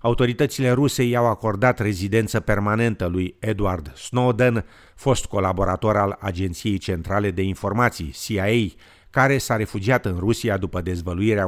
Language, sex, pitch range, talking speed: Romanian, male, 95-115 Hz, 125 wpm